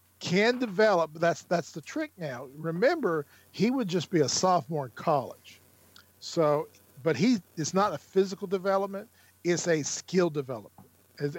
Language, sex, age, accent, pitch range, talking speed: English, male, 50-69, American, 145-175 Hz, 160 wpm